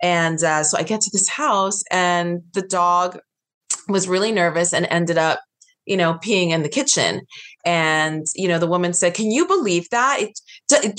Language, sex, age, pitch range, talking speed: English, female, 20-39, 160-200 Hz, 190 wpm